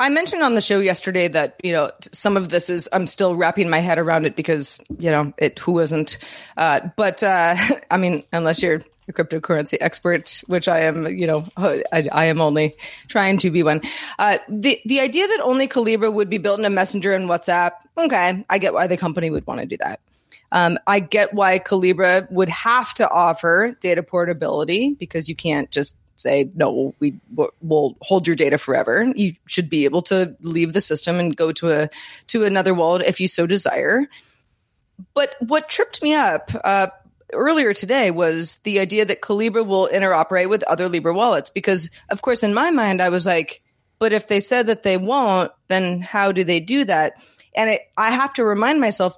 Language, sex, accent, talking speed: English, female, American, 200 wpm